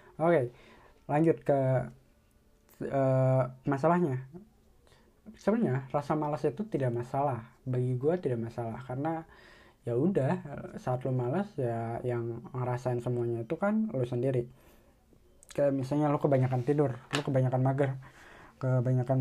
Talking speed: 120 wpm